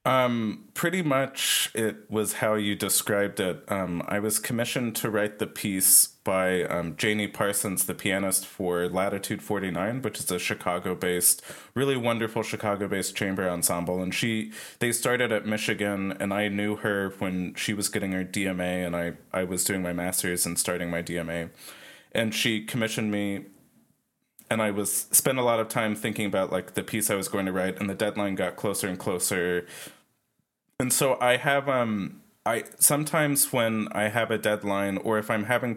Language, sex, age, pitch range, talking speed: English, male, 20-39, 95-110 Hz, 185 wpm